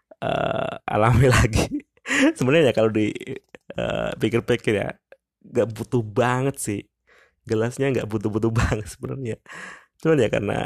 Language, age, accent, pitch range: Indonesian, 20-39, native, 100-115 Hz